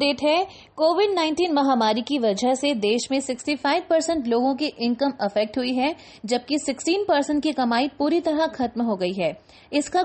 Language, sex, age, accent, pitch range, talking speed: Hindi, female, 20-39, native, 235-300 Hz, 180 wpm